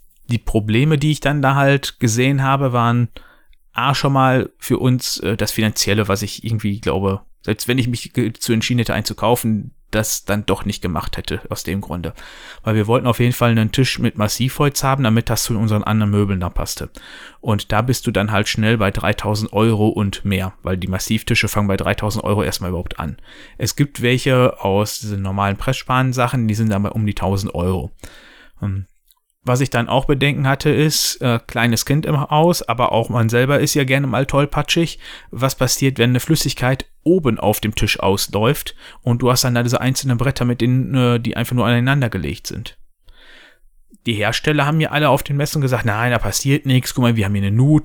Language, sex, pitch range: German, male, 105-130 Hz